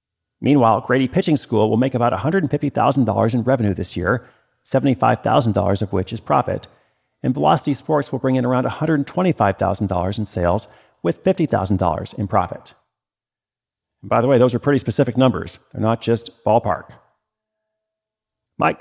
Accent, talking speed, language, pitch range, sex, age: American, 145 wpm, English, 110-135 Hz, male, 40-59